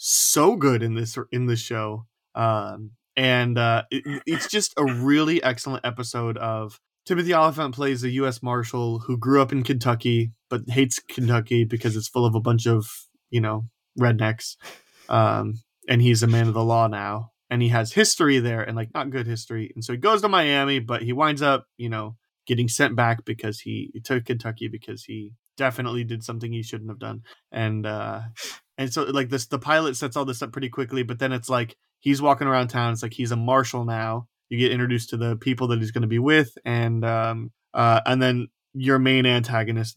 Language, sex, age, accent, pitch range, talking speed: English, male, 20-39, American, 115-130 Hz, 205 wpm